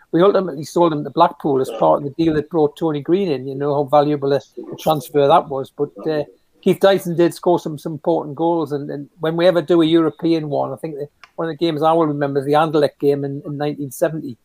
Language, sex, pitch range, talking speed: English, male, 145-170 Hz, 255 wpm